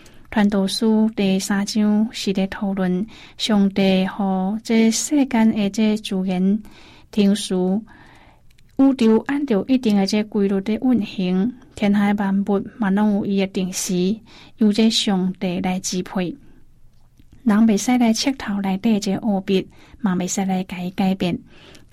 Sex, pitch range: female, 190-220 Hz